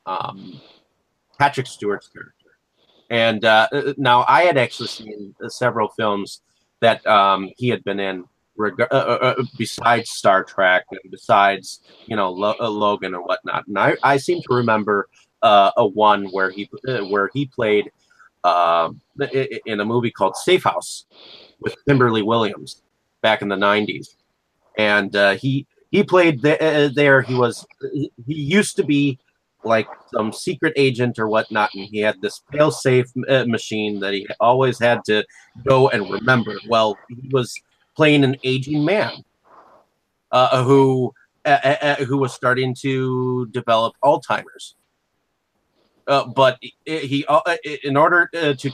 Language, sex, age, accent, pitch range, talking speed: English, male, 30-49, American, 110-140 Hz, 150 wpm